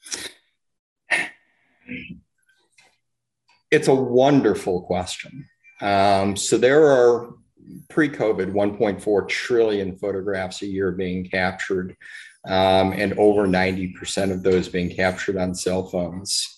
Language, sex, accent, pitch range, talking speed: English, male, American, 95-105 Hz, 100 wpm